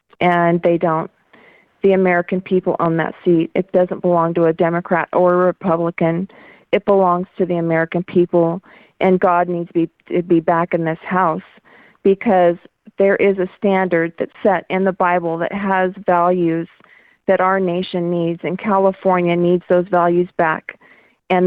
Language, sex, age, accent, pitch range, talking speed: English, female, 40-59, American, 175-195 Hz, 160 wpm